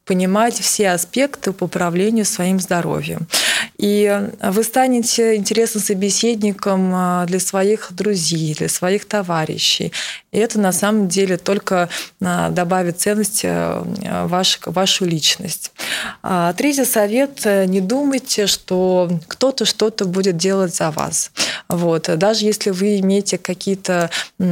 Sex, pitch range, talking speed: female, 170-210 Hz, 115 wpm